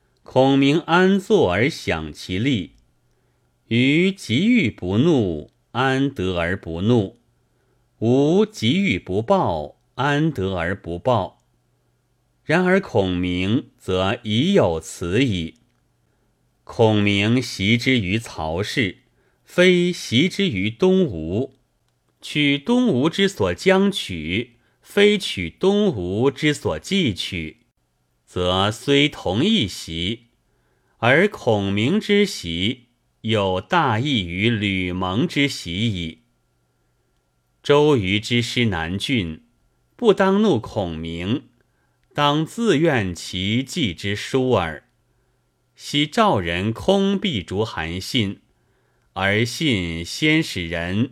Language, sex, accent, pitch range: Chinese, male, native, 90-145 Hz